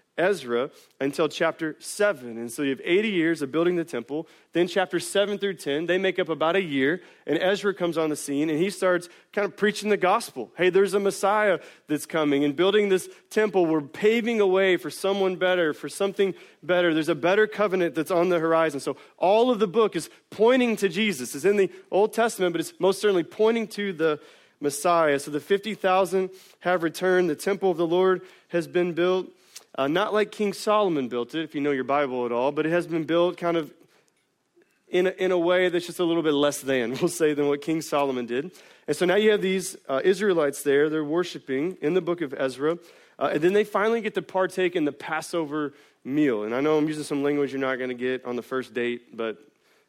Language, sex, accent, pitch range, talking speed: English, male, American, 150-195 Hz, 225 wpm